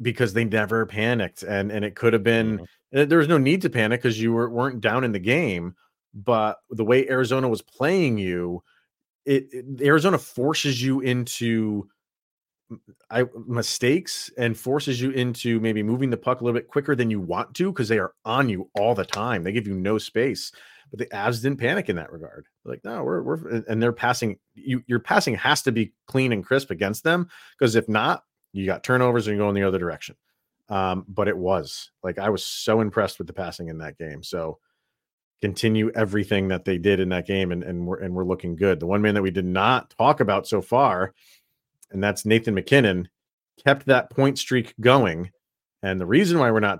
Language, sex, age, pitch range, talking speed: English, male, 30-49, 95-130 Hz, 210 wpm